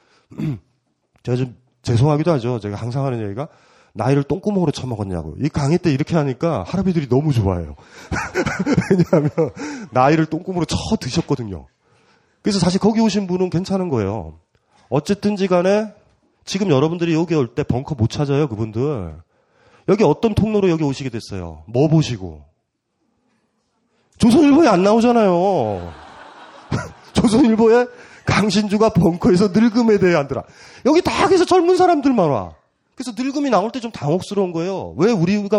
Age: 30-49